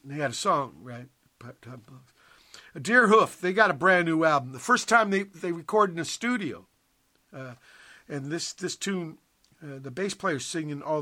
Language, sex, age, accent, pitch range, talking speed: English, male, 60-79, American, 130-190 Hz, 190 wpm